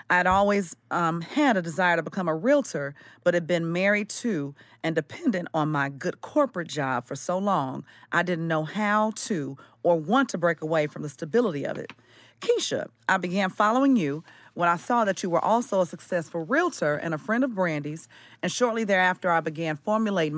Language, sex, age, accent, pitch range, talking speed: English, female, 40-59, American, 150-200 Hz, 195 wpm